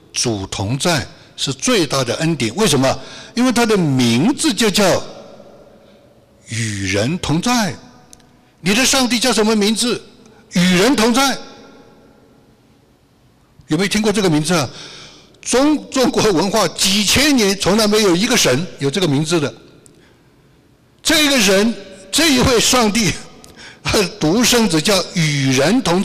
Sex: male